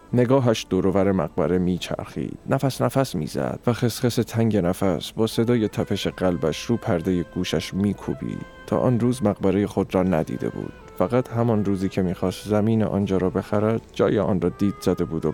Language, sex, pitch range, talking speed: Persian, male, 90-110 Hz, 170 wpm